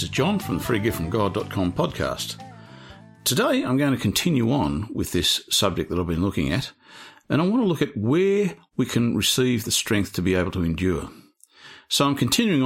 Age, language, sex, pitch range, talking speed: 50-69, English, male, 90-135 Hz, 190 wpm